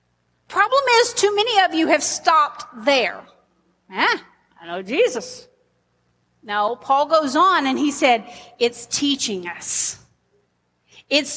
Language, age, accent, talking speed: English, 40-59, American, 125 wpm